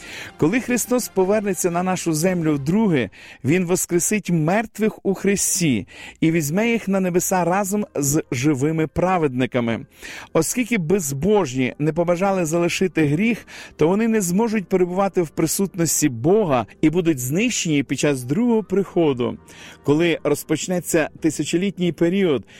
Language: Ukrainian